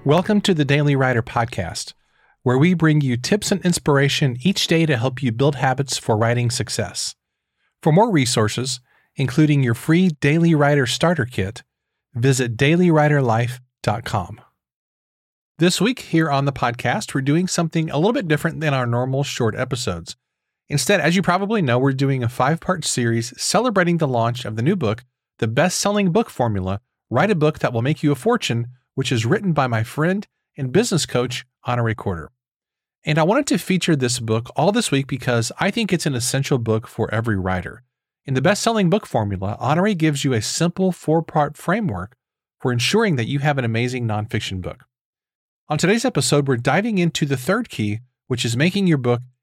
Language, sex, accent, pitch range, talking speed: English, male, American, 120-165 Hz, 180 wpm